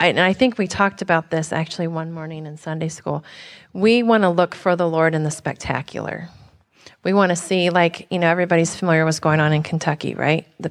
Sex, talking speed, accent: female, 230 wpm, American